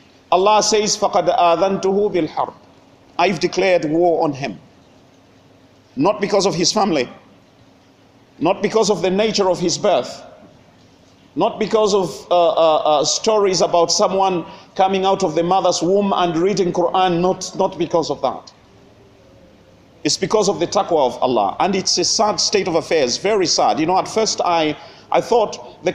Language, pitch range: English, 165-215 Hz